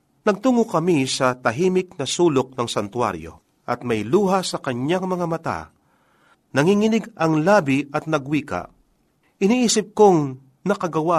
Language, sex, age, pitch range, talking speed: Filipino, male, 40-59, 120-180 Hz, 125 wpm